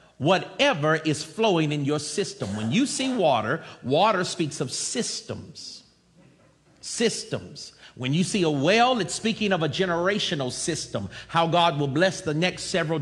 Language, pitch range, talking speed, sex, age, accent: English, 145-195 Hz, 150 wpm, male, 50-69, American